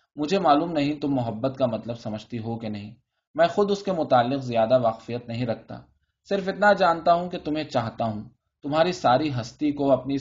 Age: 20-39